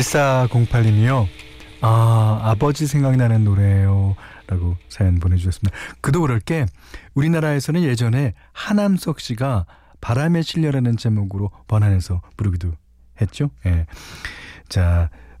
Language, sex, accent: Korean, male, native